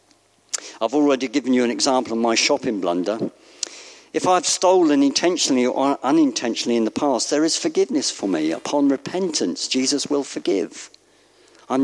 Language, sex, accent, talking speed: English, male, British, 150 wpm